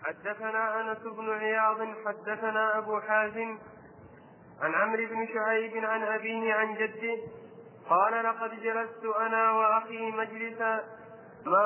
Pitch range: 220-230 Hz